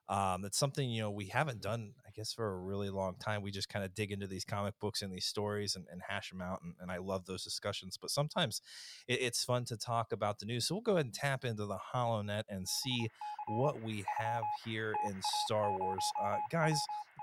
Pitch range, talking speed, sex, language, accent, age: 100-135 Hz, 240 wpm, male, English, American, 30-49